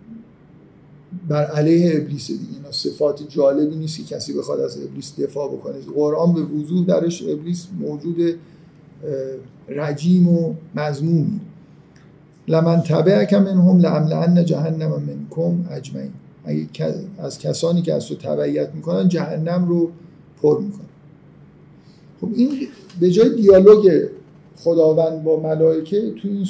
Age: 50-69